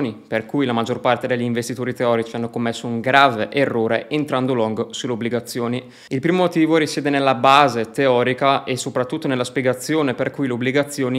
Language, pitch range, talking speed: Italian, 120-140 Hz, 170 wpm